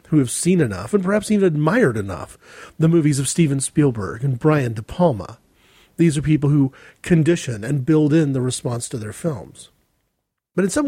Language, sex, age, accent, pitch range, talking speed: English, male, 40-59, American, 130-175 Hz, 190 wpm